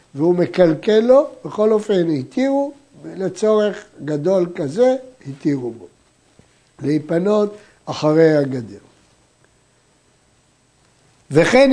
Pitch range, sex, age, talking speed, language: 155-215 Hz, male, 60-79, 75 wpm, Hebrew